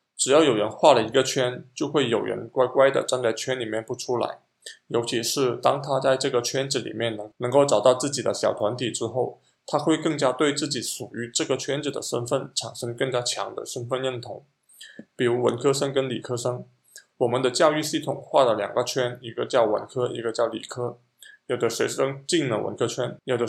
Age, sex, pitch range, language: 20-39, male, 120-140 Hz, Chinese